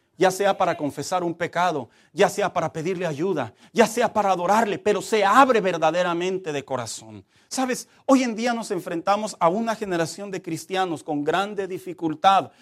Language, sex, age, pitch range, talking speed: Spanish, male, 40-59, 220-305 Hz, 165 wpm